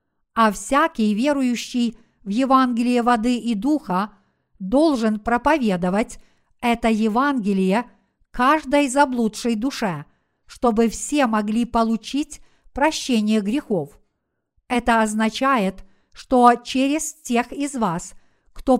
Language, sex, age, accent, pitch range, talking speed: Russian, female, 50-69, native, 215-265 Hz, 95 wpm